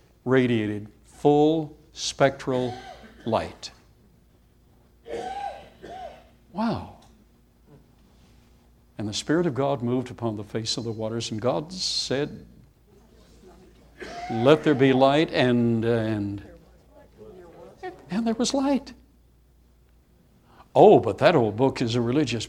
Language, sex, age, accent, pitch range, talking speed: English, male, 60-79, American, 110-145 Hz, 100 wpm